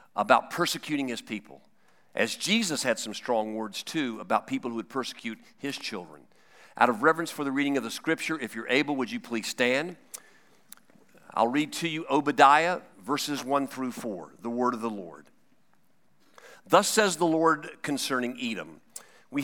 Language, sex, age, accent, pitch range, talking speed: English, male, 50-69, American, 125-170 Hz, 170 wpm